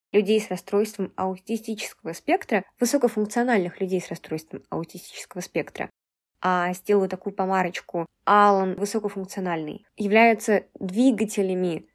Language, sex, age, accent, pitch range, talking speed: Russian, female, 20-39, native, 185-235 Hz, 95 wpm